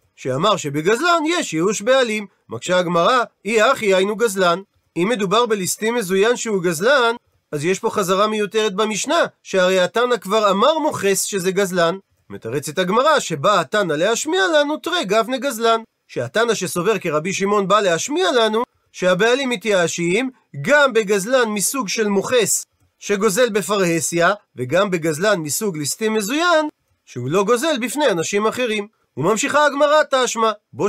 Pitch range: 195-255 Hz